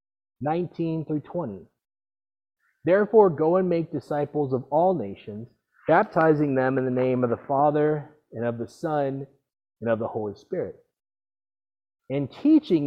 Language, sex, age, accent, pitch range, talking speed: English, male, 30-49, American, 115-175 Hz, 140 wpm